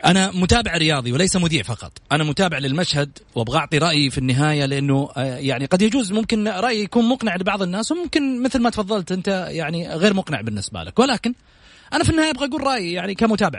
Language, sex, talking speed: English, male, 190 wpm